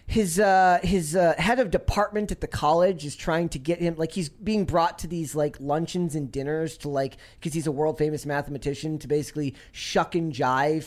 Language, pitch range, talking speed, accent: English, 150-200 Hz, 210 wpm, American